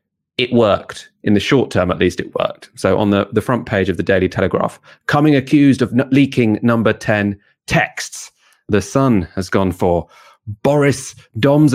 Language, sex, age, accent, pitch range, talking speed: English, male, 30-49, British, 95-125 Hz, 175 wpm